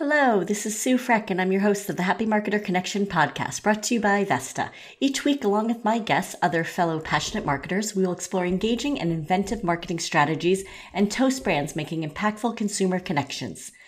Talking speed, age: 195 wpm, 40-59